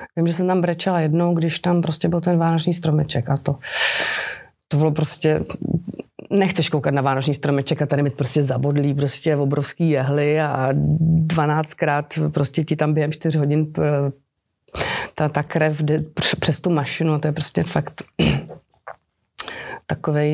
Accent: native